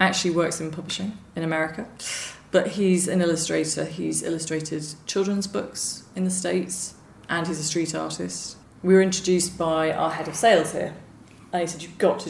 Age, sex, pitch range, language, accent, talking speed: 30-49, female, 155-180 Hz, English, British, 180 wpm